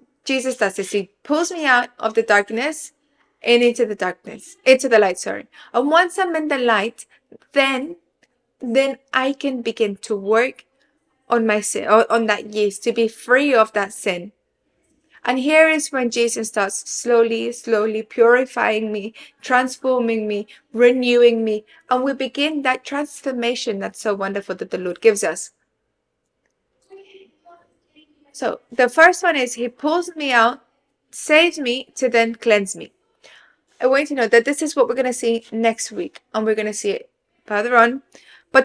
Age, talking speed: 20-39, 170 wpm